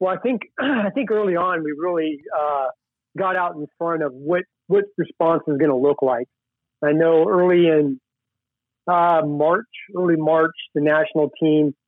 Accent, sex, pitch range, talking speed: American, male, 145-180 Hz, 170 wpm